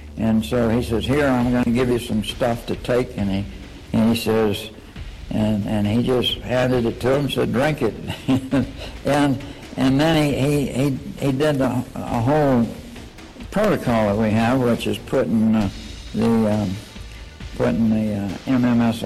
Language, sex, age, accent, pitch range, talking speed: English, male, 60-79, American, 110-135 Hz, 175 wpm